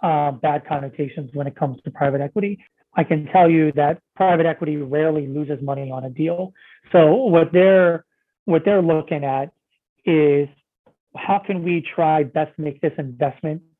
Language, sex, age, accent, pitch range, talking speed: English, male, 30-49, American, 145-175 Hz, 165 wpm